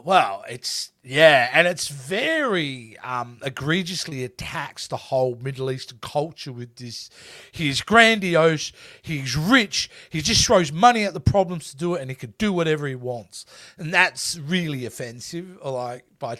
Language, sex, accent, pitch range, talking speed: English, male, Australian, 130-185 Hz, 155 wpm